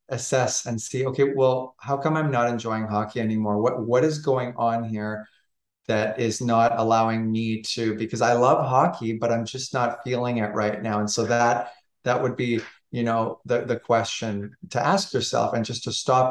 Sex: male